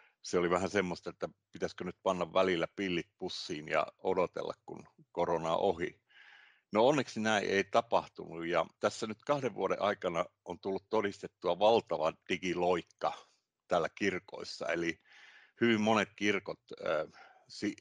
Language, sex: Finnish, male